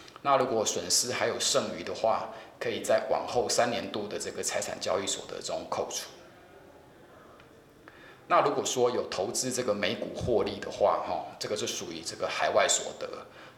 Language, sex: Chinese, male